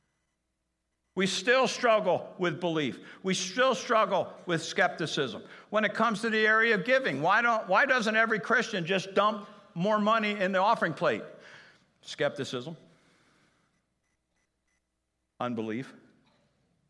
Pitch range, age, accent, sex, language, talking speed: 135-215 Hz, 60-79, American, male, English, 115 wpm